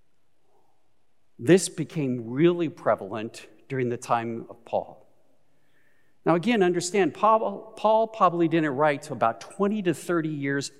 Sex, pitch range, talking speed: male, 130-185 Hz, 130 wpm